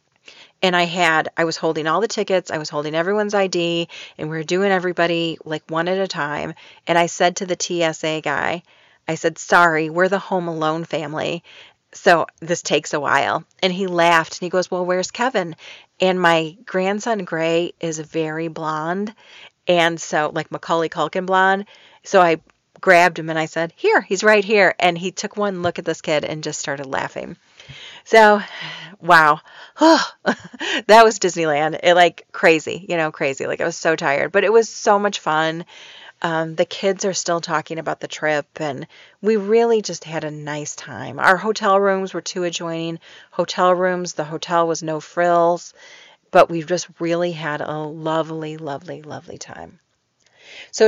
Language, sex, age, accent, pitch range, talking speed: English, female, 40-59, American, 160-190 Hz, 180 wpm